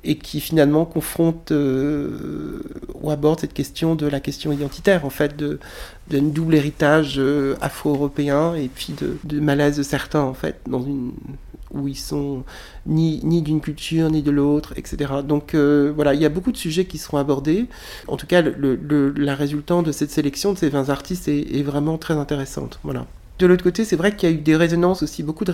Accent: French